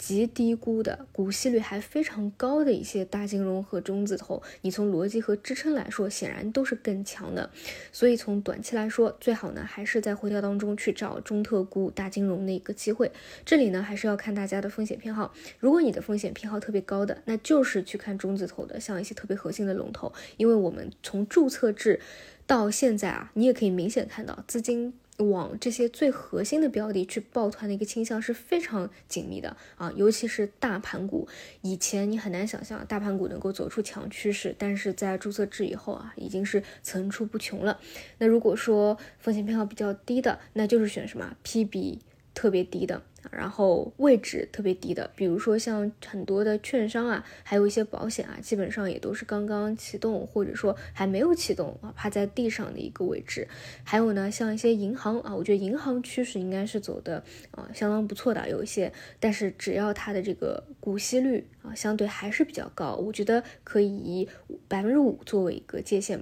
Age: 20-39